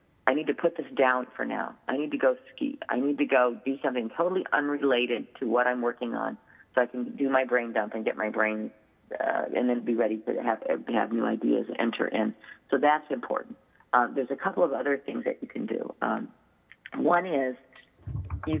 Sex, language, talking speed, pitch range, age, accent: female, English, 220 wpm, 115-135 Hz, 40-59, American